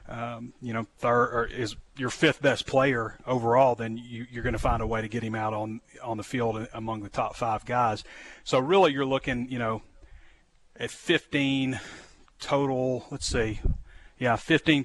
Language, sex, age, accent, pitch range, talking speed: English, male, 30-49, American, 110-130 Hz, 180 wpm